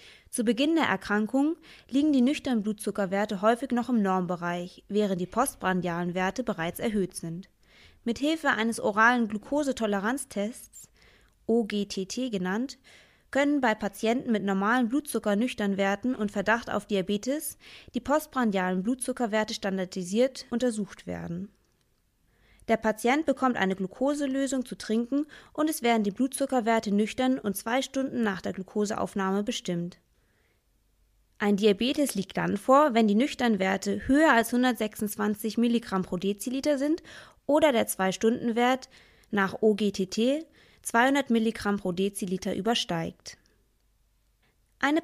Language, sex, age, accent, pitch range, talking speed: German, female, 20-39, German, 195-255 Hz, 115 wpm